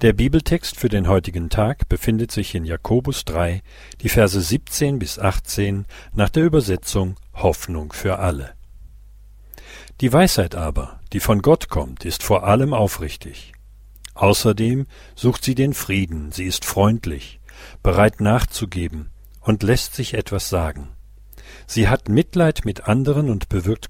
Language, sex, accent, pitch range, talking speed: German, male, German, 90-120 Hz, 140 wpm